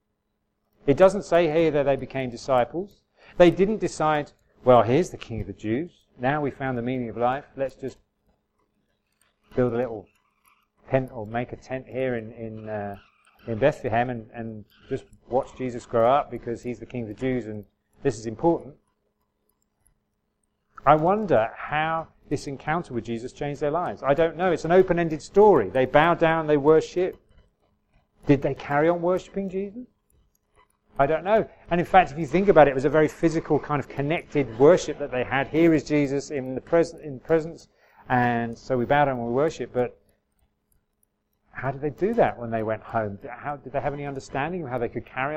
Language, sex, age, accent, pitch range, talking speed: English, male, 40-59, British, 120-155 Hz, 195 wpm